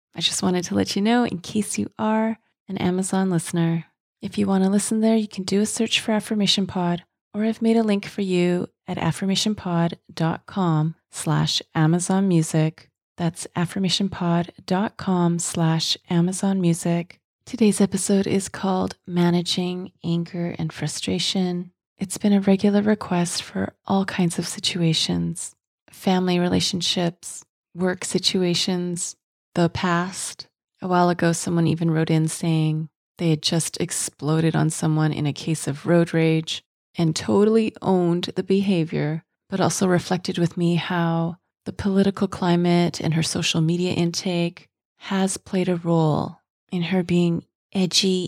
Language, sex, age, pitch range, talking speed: English, female, 30-49, 165-195 Hz, 145 wpm